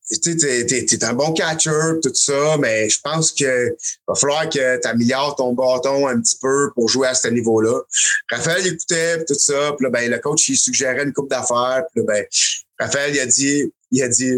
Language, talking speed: French, 210 wpm